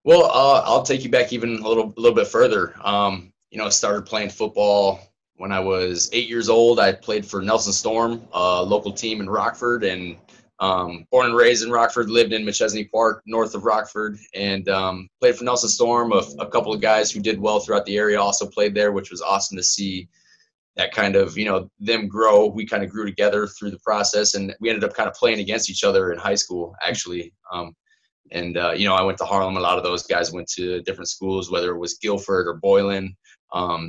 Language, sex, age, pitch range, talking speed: English, male, 20-39, 95-115 Hz, 230 wpm